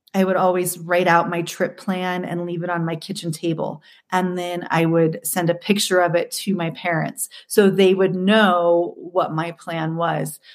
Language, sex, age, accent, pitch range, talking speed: English, female, 30-49, American, 175-215 Hz, 200 wpm